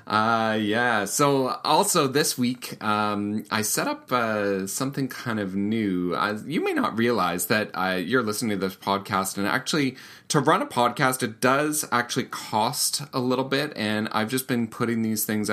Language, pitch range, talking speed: English, 100-125 Hz, 180 wpm